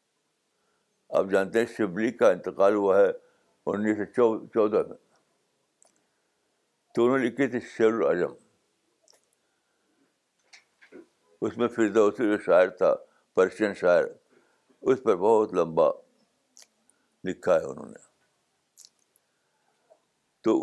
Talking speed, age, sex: 95 wpm, 60-79, male